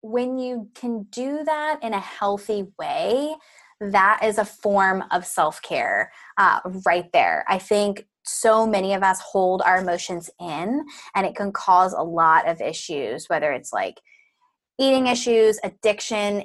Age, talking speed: 10-29, 150 wpm